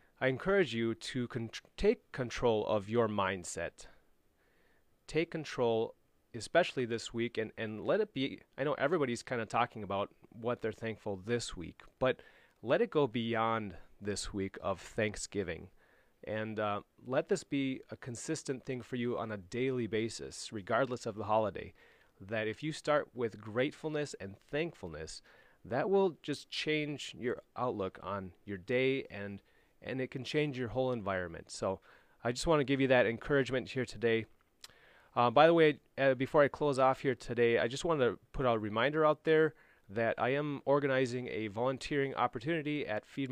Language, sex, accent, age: English, male, American, 30-49